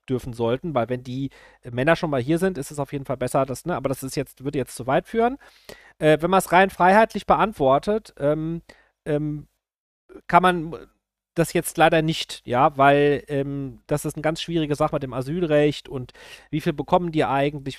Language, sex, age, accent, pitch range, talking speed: German, male, 40-59, German, 135-170 Hz, 200 wpm